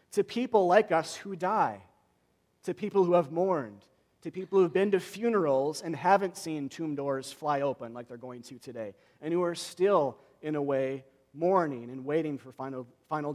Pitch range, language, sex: 140-185 Hz, English, male